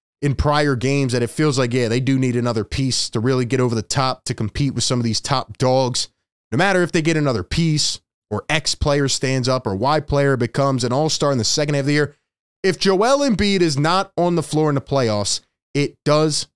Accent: American